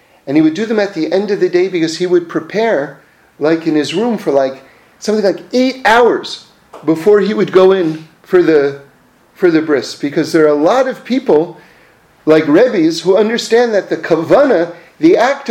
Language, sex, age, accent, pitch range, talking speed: English, male, 40-59, American, 155-245 Hz, 195 wpm